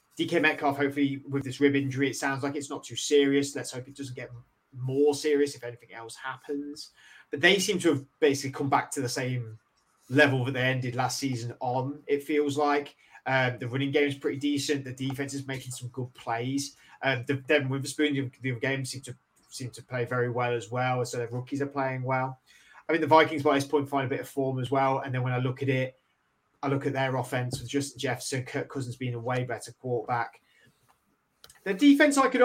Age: 20-39